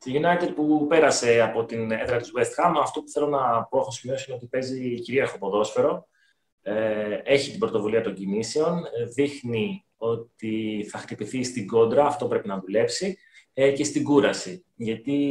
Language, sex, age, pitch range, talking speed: Greek, male, 20-39, 115-150 Hz, 160 wpm